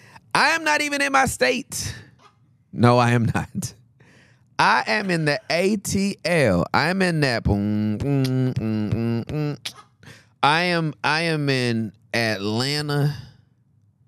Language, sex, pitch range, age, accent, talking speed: English, male, 100-125 Hz, 30-49, American, 130 wpm